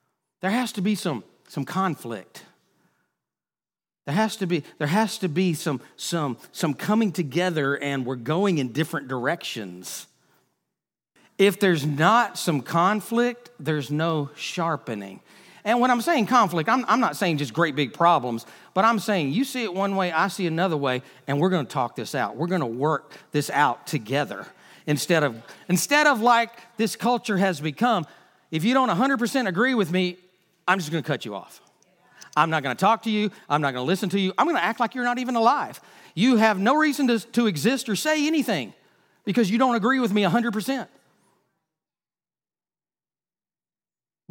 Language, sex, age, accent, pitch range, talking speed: English, male, 40-59, American, 155-230 Hz, 180 wpm